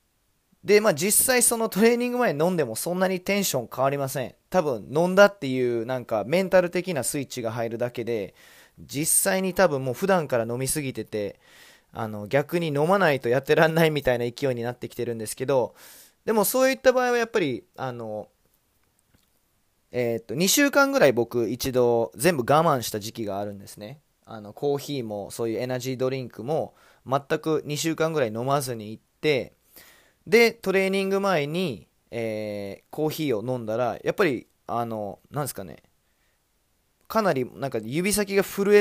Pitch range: 115-180 Hz